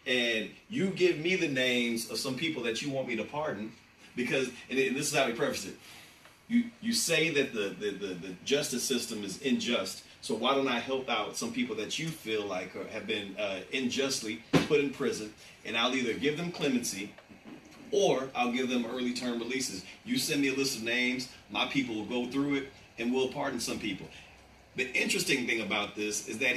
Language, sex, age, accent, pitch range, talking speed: English, male, 30-49, American, 115-145 Hz, 210 wpm